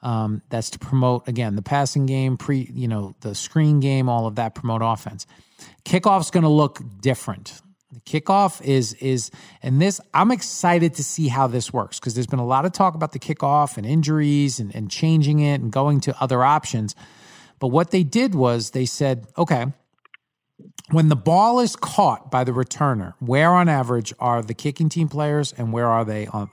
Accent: American